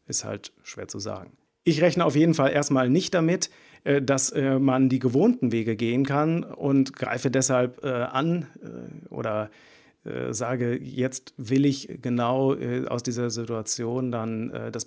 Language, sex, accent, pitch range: German, male, German, 115-135 Hz